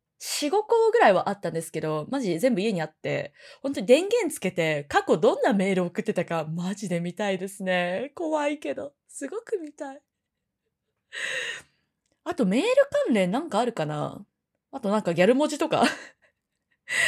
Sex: female